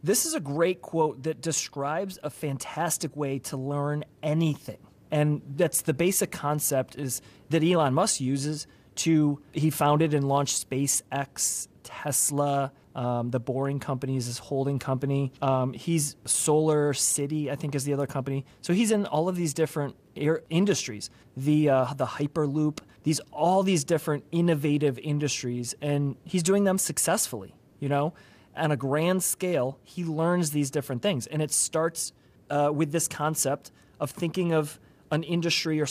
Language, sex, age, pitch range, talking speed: English, male, 30-49, 135-160 Hz, 160 wpm